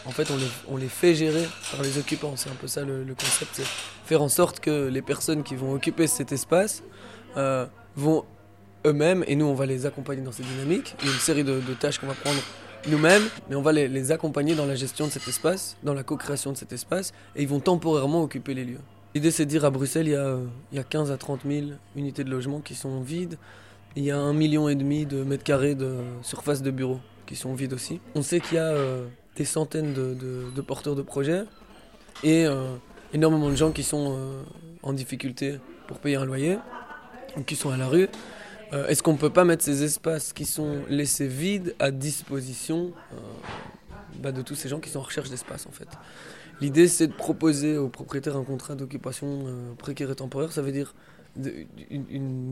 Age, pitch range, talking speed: 20-39, 135-155 Hz, 225 wpm